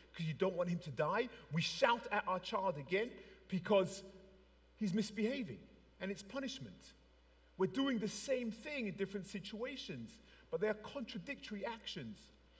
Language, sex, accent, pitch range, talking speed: English, male, British, 175-255 Hz, 150 wpm